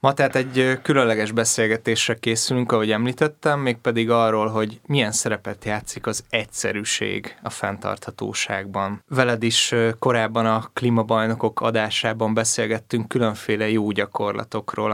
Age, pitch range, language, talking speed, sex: 20-39, 105-120 Hz, Hungarian, 110 wpm, male